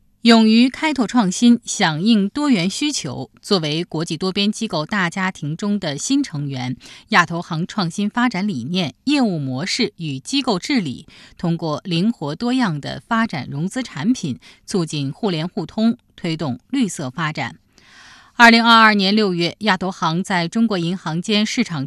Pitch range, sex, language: 165-230 Hz, female, Chinese